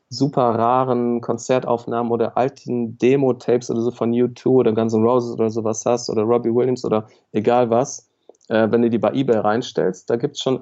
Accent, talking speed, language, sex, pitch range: German, 190 wpm, German, male, 110-125 Hz